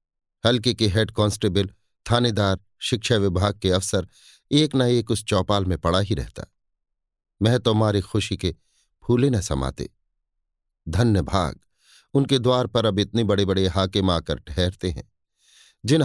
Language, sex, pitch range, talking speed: Hindi, male, 90-120 Hz, 150 wpm